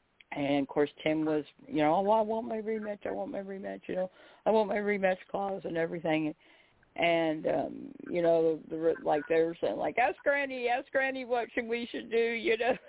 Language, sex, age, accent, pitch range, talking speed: English, female, 50-69, American, 170-235 Hz, 220 wpm